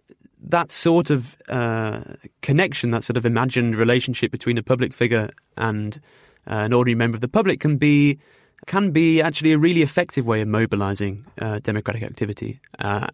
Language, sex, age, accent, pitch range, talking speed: English, male, 20-39, British, 115-140 Hz, 170 wpm